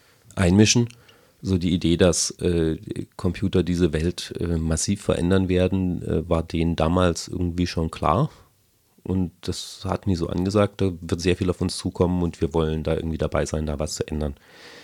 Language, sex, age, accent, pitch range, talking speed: German, male, 30-49, German, 80-90 Hz, 180 wpm